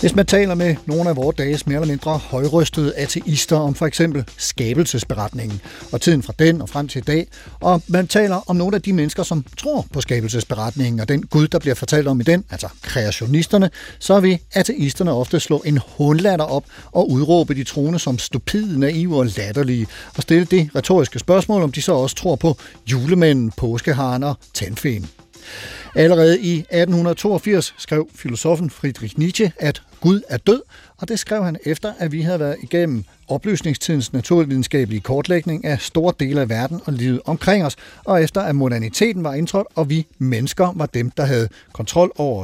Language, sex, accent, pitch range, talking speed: Danish, male, native, 135-175 Hz, 180 wpm